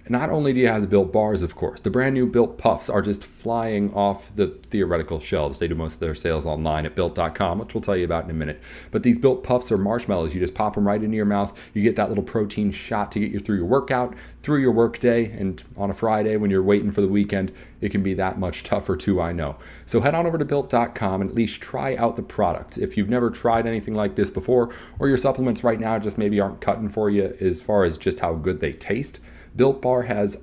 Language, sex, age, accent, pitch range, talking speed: English, male, 30-49, American, 95-115 Hz, 260 wpm